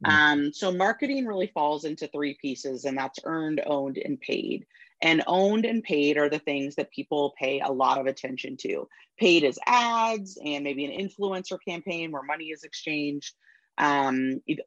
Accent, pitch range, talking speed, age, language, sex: American, 140-185 Hz, 170 wpm, 30-49, English, female